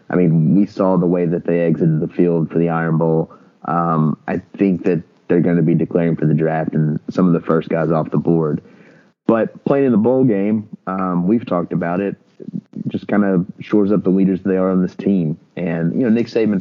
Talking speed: 235 wpm